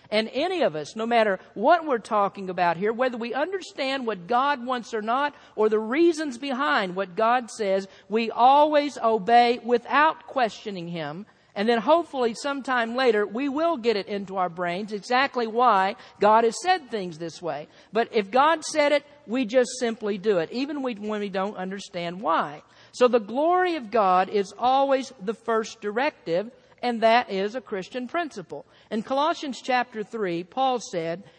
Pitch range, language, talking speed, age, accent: 195-260 Hz, English, 170 wpm, 50-69, American